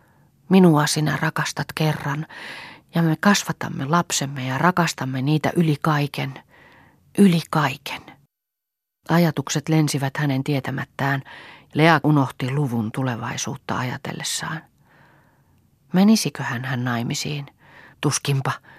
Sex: female